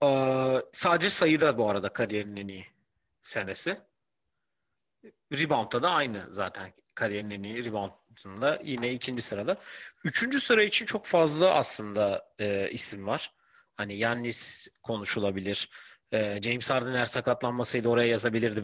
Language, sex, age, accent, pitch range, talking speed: Turkish, male, 40-59, native, 110-140 Hz, 115 wpm